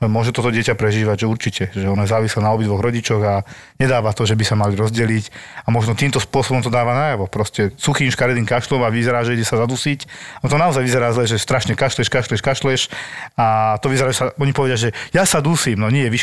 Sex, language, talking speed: male, Slovak, 225 wpm